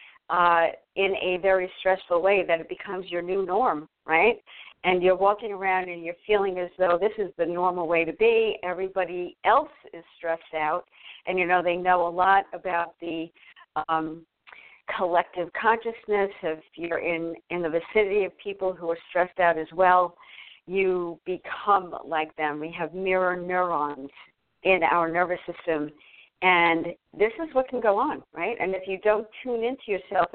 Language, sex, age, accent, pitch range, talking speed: English, female, 50-69, American, 170-205 Hz, 170 wpm